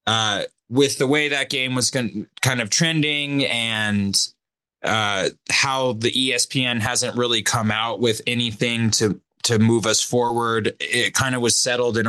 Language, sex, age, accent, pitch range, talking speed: English, male, 20-39, American, 100-125 Hz, 160 wpm